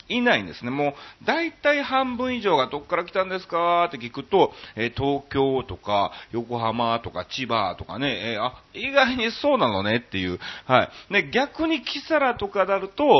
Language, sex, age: Japanese, male, 40-59